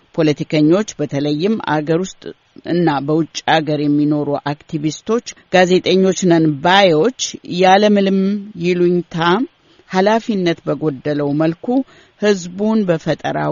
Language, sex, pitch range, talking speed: Amharic, female, 150-185 Hz, 85 wpm